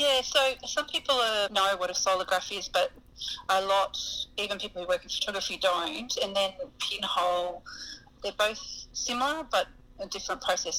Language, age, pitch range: English, 30-49, 180-255 Hz